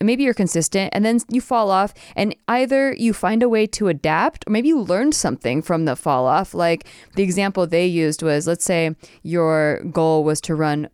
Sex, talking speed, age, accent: female, 210 wpm, 20-39, American